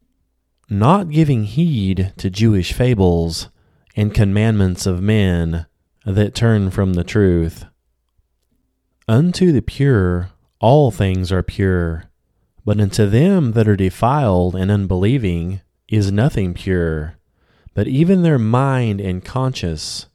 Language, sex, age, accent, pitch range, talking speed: English, male, 30-49, American, 90-115 Hz, 115 wpm